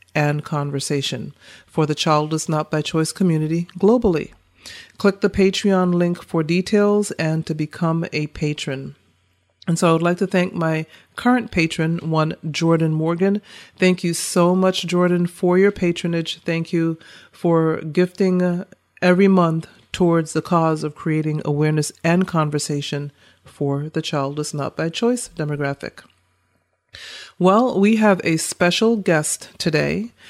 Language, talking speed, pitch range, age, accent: English, 140 wpm, 150-180 Hz, 40-59, American